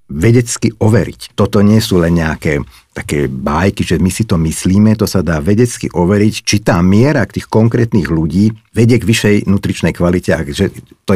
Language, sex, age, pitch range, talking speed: Slovak, male, 50-69, 85-110 Hz, 170 wpm